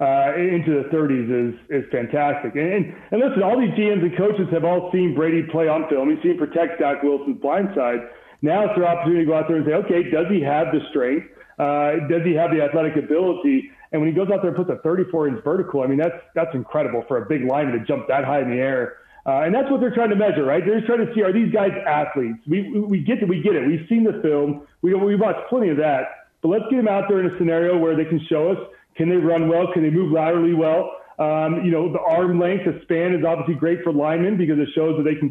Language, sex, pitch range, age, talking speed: English, male, 155-195 Hz, 40-59, 270 wpm